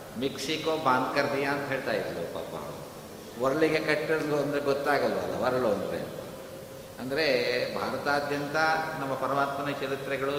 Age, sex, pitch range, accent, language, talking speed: 60-79, male, 130-145 Hz, native, Kannada, 105 wpm